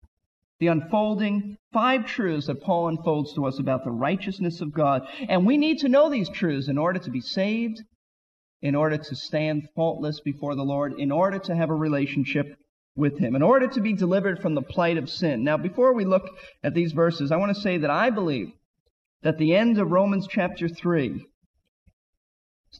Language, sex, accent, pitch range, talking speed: English, male, American, 155-215 Hz, 195 wpm